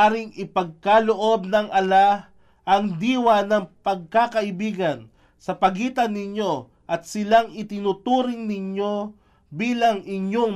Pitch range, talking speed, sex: 155-215 Hz, 95 wpm, male